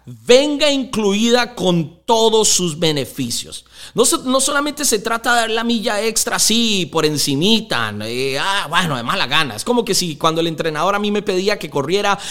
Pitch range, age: 175-240 Hz, 30-49